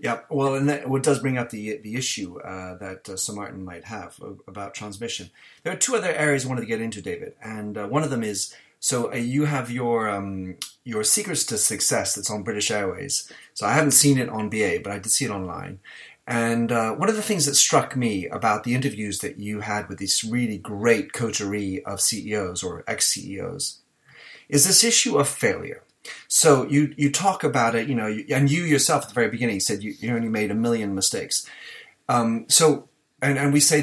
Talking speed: 215 wpm